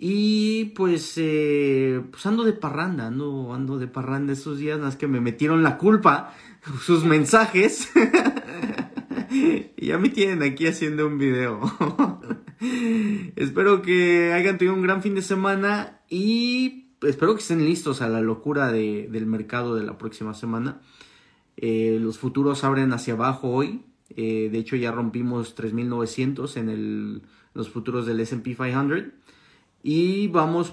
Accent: Mexican